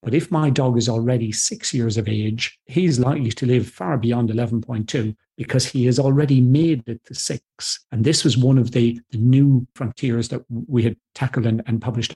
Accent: British